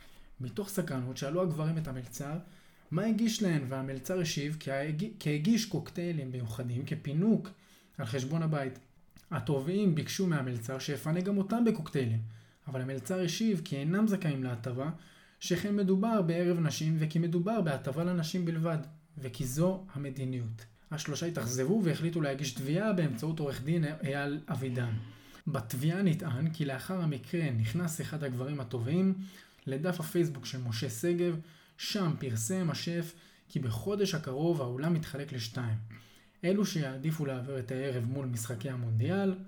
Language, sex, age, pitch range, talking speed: Hebrew, male, 20-39, 130-180 Hz, 135 wpm